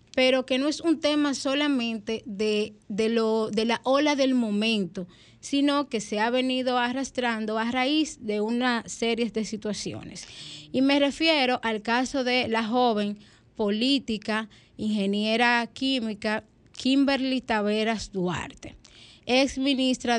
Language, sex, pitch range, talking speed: Spanish, female, 215-260 Hz, 125 wpm